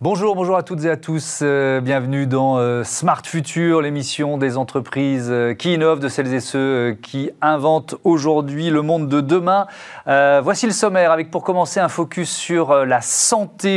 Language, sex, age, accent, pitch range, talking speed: French, male, 40-59, French, 135-175 Hz, 170 wpm